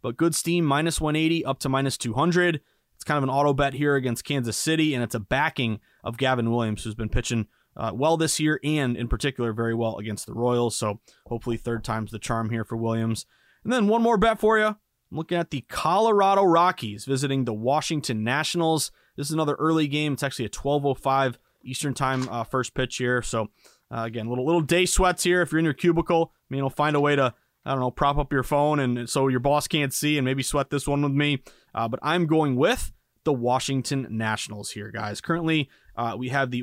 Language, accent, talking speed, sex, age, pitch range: English, American, 225 wpm, male, 20-39, 120-155 Hz